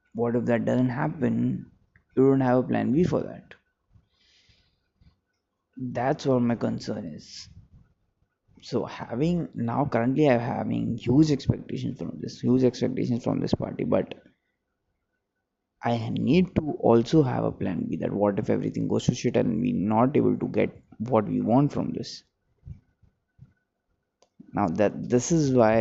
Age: 20-39